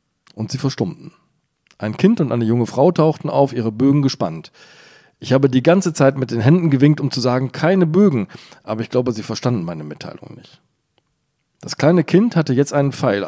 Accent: German